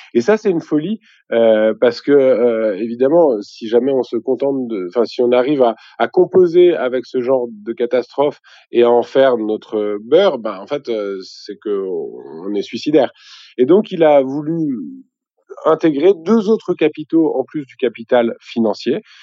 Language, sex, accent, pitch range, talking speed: French, male, French, 120-170 Hz, 175 wpm